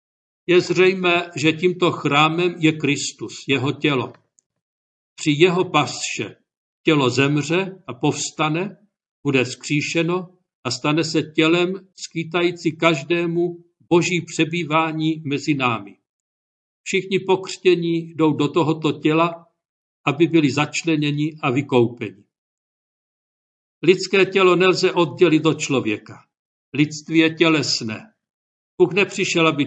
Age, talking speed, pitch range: 60-79, 105 wpm, 145-175 Hz